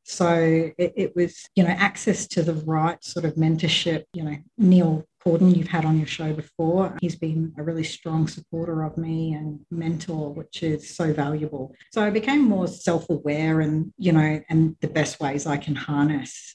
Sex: female